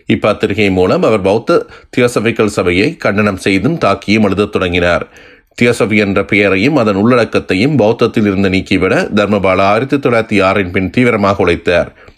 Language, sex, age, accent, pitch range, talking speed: Tamil, male, 30-49, native, 95-110 Hz, 120 wpm